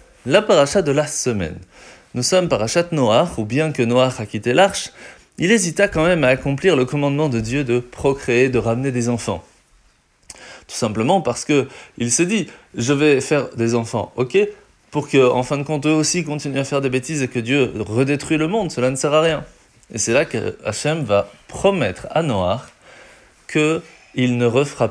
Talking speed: 200 wpm